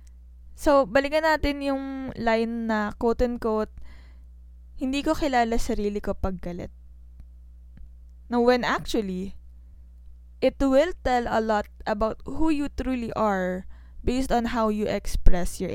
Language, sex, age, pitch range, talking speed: Filipino, female, 10-29, 180-255 Hz, 130 wpm